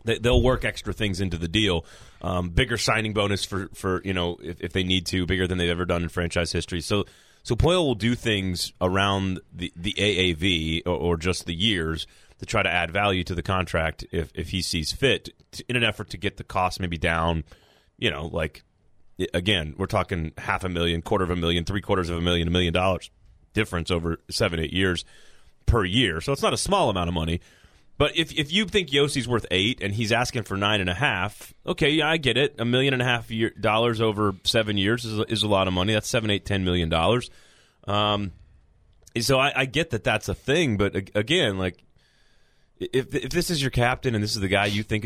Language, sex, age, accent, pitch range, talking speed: English, male, 30-49, American, 90-115 Hz, 225 wpm